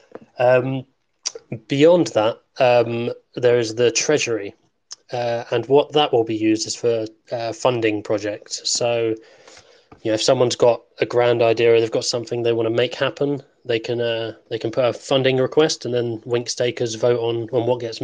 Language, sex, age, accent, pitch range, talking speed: English, male, 20-39, British, 115-135 Hz, 185 wpm